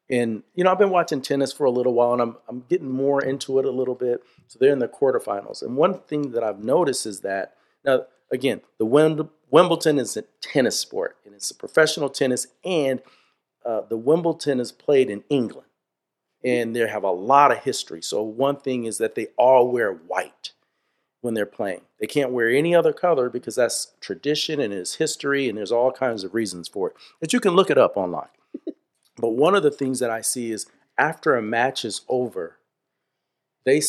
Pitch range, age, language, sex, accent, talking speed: 120-155 Hz, 40-59, English, male, American, 205 wpm